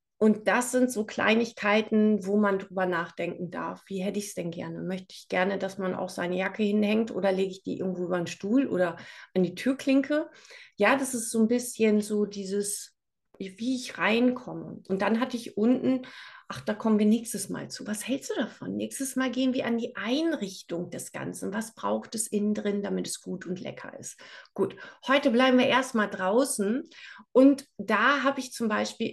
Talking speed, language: 200 wpm, German